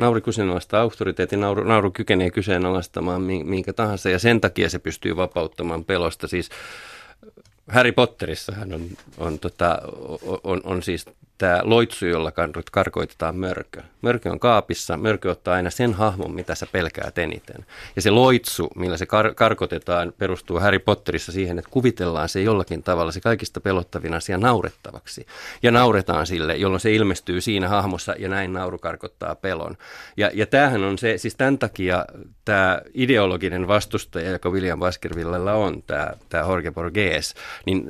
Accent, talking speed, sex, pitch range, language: native, 150 wpm, male, 90-110 Hz, Finnish